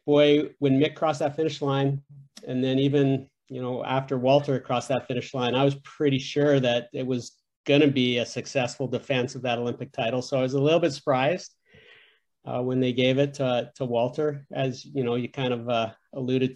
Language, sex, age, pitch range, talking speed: English, male, 40-59, 125-145 Hz, 210 wpm